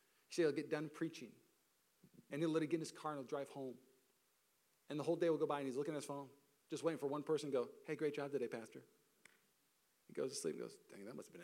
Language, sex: English, male